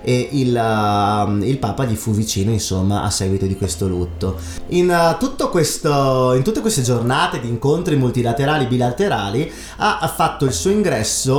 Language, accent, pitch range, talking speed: Italian, native, 110-140 Hz, 170 wpm